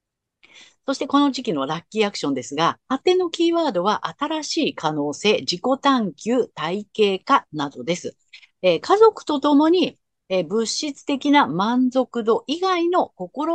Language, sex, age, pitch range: Japanese, female, 50-69, 180-295 Hz